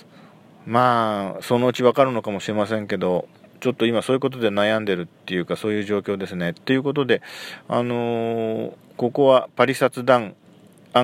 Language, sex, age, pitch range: Japanese, male, 40-59, 100-135 Hz